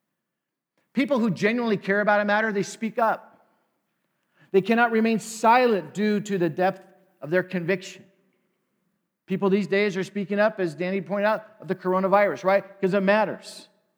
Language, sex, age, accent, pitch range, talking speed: English, male, 50-69, American, 160-205 Hz, 165 wpm